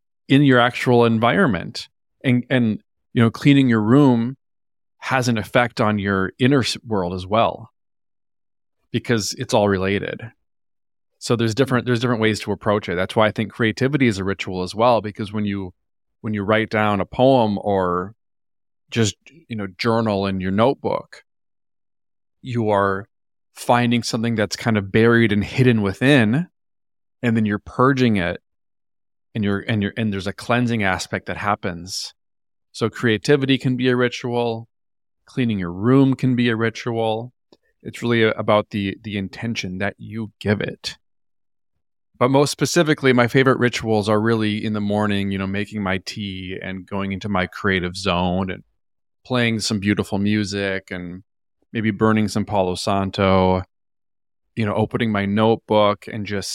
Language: English